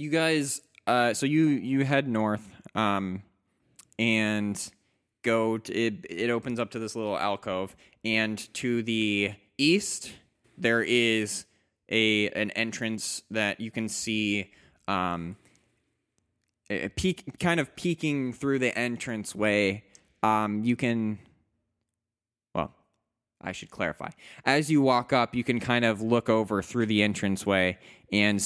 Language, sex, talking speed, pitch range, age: English, male, 135 wpm, 100-115 Hz, 20-39